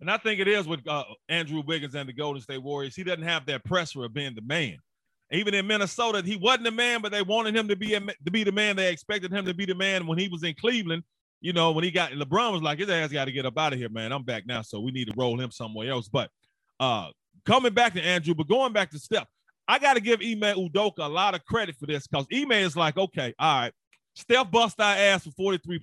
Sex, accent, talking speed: male, American, 275 wpm